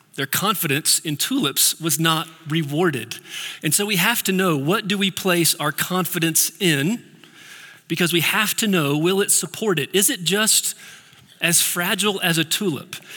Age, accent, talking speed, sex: 40-59, American, 170 wpm, male